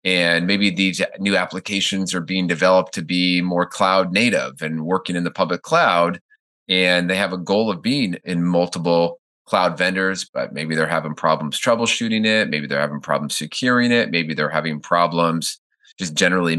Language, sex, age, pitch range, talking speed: English, male, 30-49, 80-95 Hz, 175 wpm